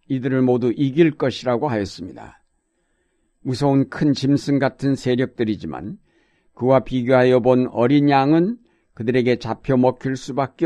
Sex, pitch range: male, 120-145 Hz